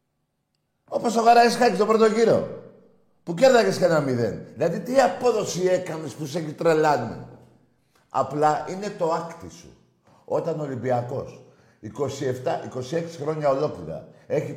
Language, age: Greek, 50-69